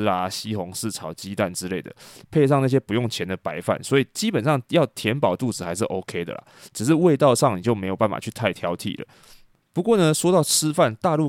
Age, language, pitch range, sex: 20-39, Chinese, 105-145 Hz, male